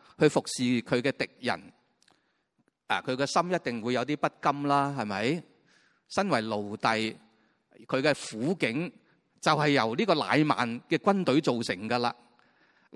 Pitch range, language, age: 120-170 Hz, Chinese, 30-49